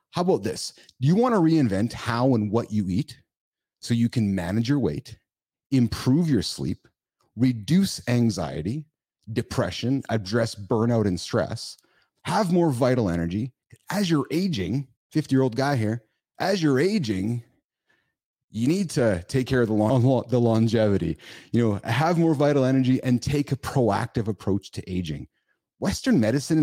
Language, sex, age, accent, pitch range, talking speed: English, male, 30-49, American, 110-160 Hz, 150 wpm